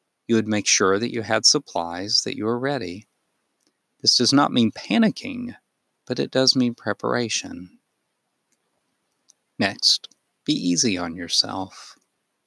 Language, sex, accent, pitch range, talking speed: English, male, American, 105-135 Hz, 130 wpm